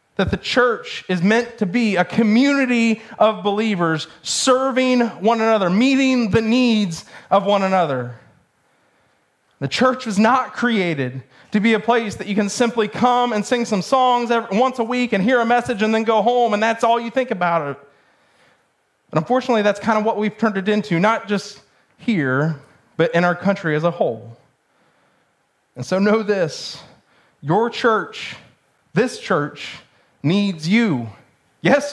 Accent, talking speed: American, 165 wpm